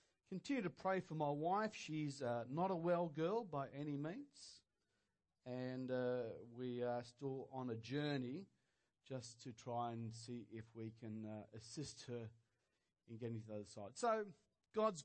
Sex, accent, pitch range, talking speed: male, Australian, 125-195 Hz, 170 wpm